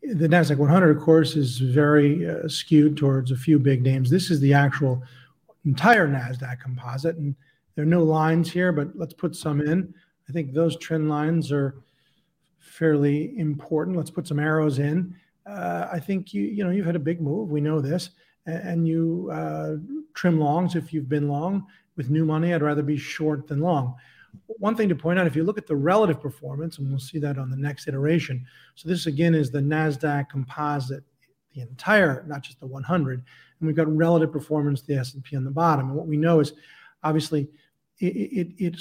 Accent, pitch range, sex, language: American, 140-170 Hz, male, English